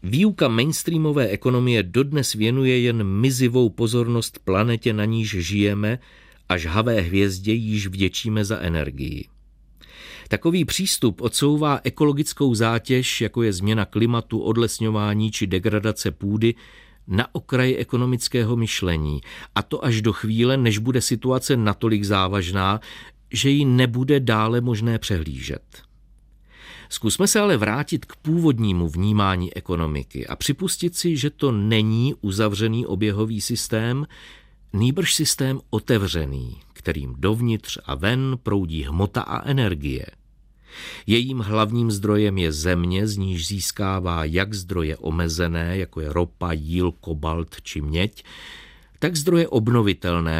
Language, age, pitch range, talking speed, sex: Czech, 50-69, 95-125 Hz, 120 wpm, male